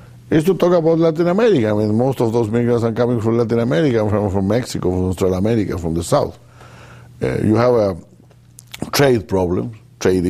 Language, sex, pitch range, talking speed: English, male, 90-115 Hz, 190 wpm